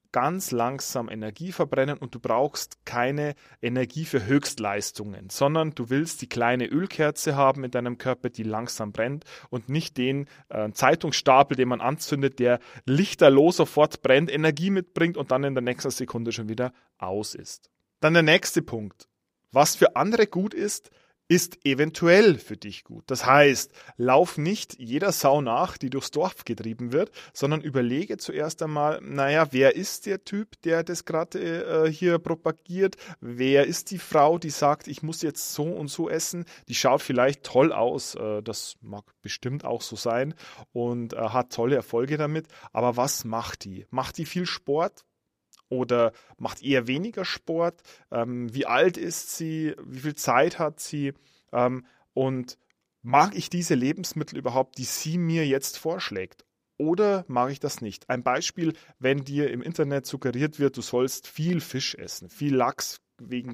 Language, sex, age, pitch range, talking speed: German, male, 30-49, 120-160 Hz, 165 wpm